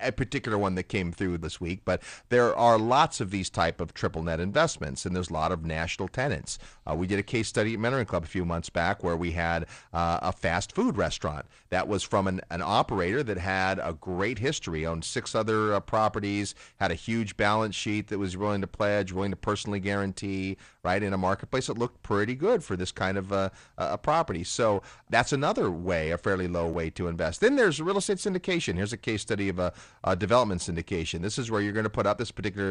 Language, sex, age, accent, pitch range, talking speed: English, male, 40-59, American, 90-110 Hz, 230 wpm